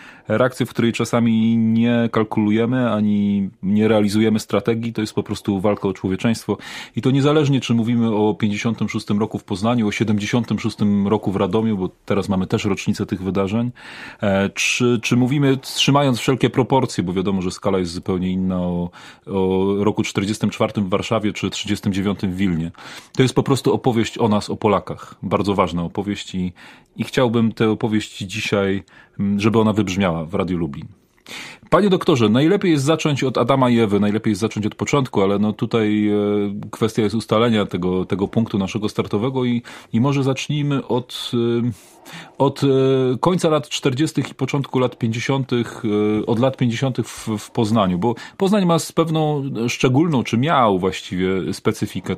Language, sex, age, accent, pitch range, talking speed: Polish, male, 30-49, native, 100-125 Hz, 160 wpm